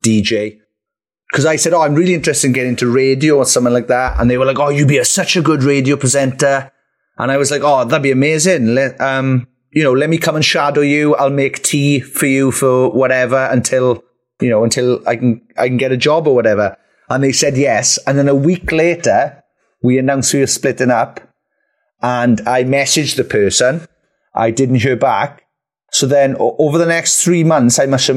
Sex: male